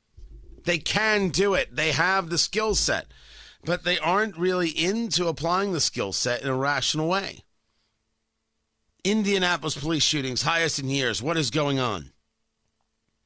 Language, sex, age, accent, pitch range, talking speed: English, male, 40-59, American, 155-210 Hz, 145 wpm